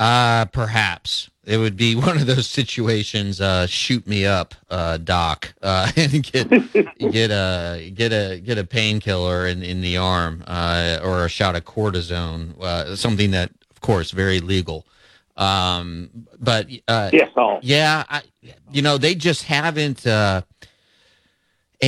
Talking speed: 145 wpm